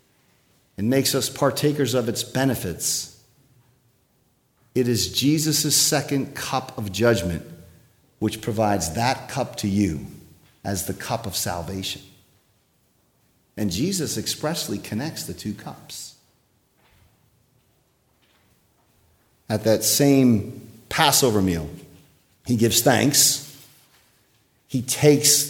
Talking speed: 100 wpm